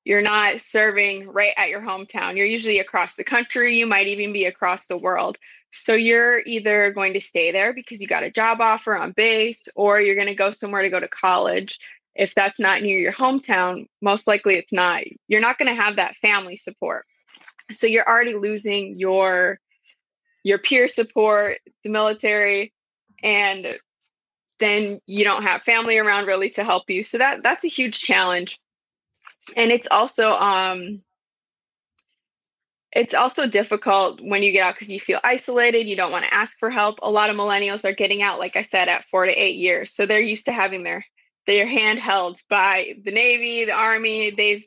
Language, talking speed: English, 190 wpm